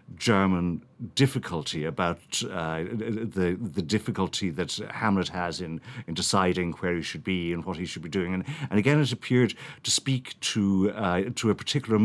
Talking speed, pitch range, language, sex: 175 wpm, 85-120 Hz, English, male